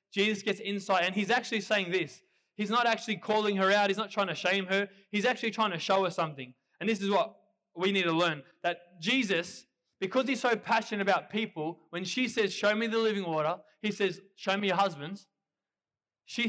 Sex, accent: male, Australian